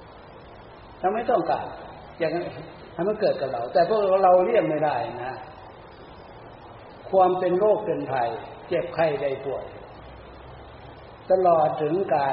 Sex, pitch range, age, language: male, 120-180 Hz, 60-79, Thai